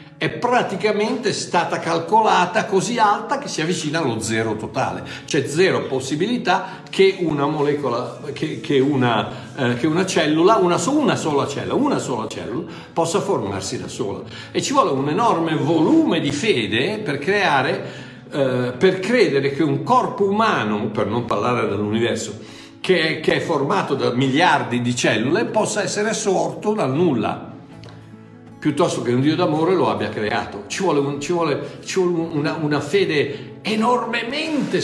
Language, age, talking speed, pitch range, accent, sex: Italian, 60-79, 150 wpm, 125-180 Hz, native, male